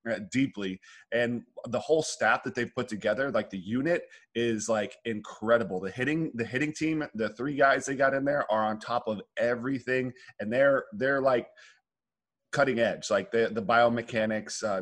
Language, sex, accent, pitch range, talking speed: English, male, American, 110-130 Hz, 175 wpm